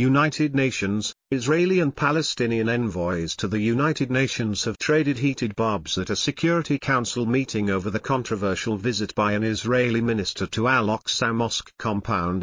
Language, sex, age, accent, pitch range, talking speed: English, male, 50-69, British, 105-140 Hz, 155 wpm